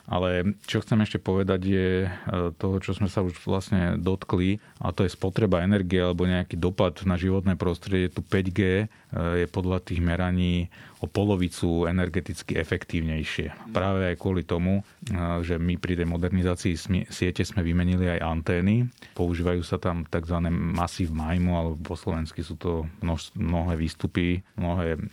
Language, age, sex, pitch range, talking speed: Slovak, 30-49, male, 85-100 Hz, 150 wpm